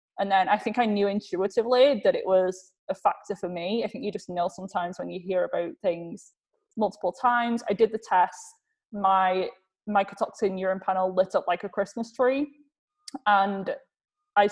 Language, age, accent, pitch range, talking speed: English, 20-39, British, 185-230 Hz, 180 wpm